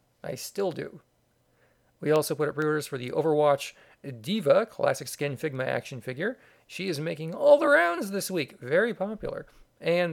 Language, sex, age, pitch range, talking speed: English, male, 40-59, 140-190 Hz, 165 wpm